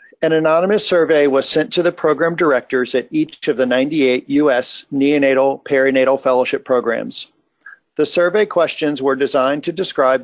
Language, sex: English, male